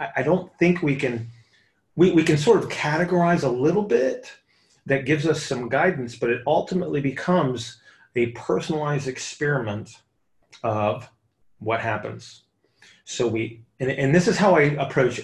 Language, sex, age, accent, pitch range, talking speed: English, male, 30-49, American, 120-145 Hz, 150 wpm